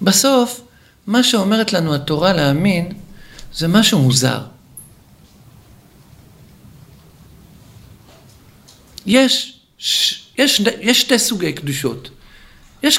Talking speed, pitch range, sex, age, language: 80 wpm, 175-250 Hz, male, 50-69, Hebrew